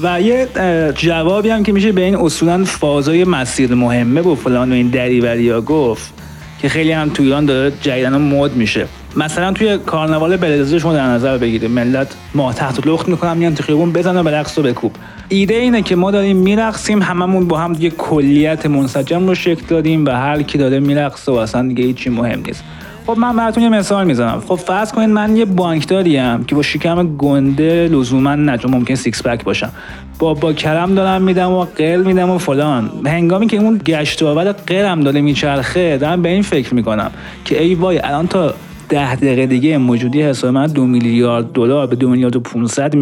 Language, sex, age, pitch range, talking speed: Persian, male, 30-49, 130-185 Hz, 185 wpm